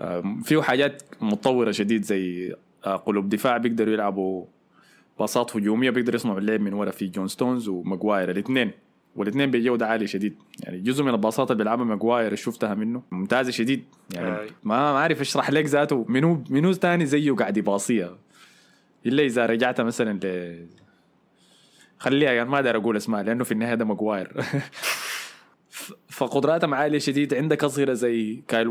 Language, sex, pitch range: Arabic, male, 110-130 Hz